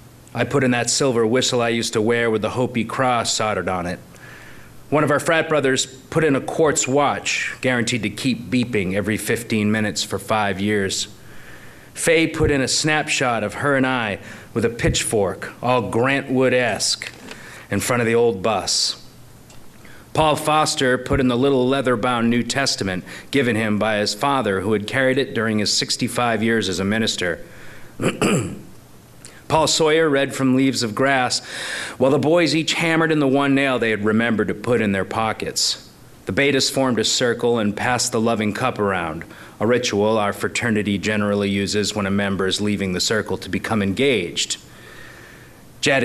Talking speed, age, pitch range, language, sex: 175 wpm, 40-59, 105-130 Hz, English, male